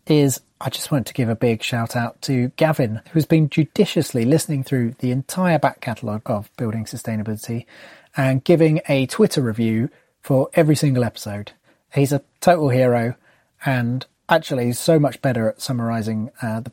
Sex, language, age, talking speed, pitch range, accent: male, English, 30-49, 165 wpm, 115-150 Hz, British